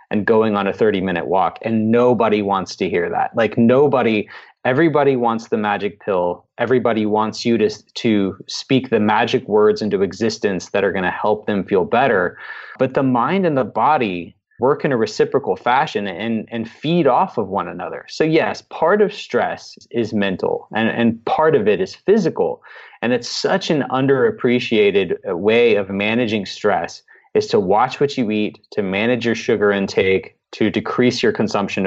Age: 20-39